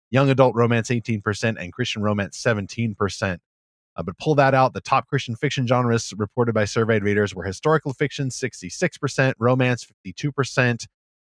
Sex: male